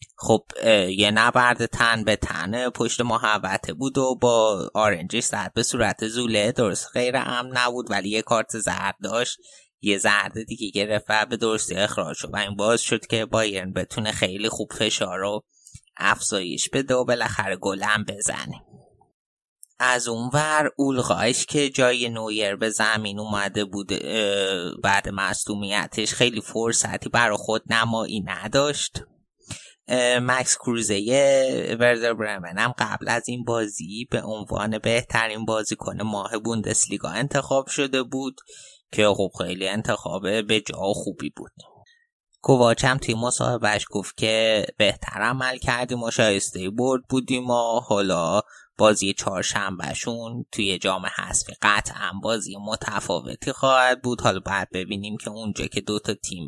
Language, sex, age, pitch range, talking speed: Persian, male, 30-49, 105-125 Hz, 130 wpm